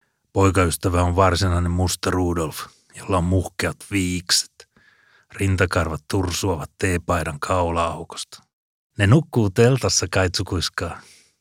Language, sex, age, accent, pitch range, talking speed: Finnish, male, 30-49, native, 90-100 Hz, 90 wpm